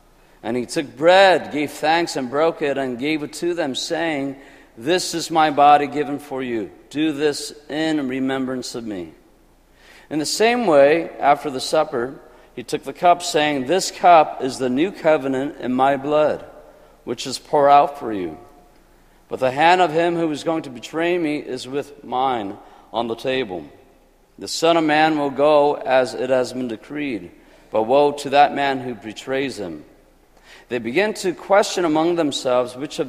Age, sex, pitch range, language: 50-69, male, 130-165 Hz, Korean